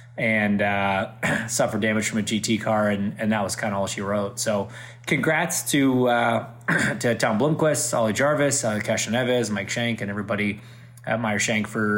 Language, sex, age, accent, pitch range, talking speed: English, male, 20-39, American, 110-125 Hz, 180 wpm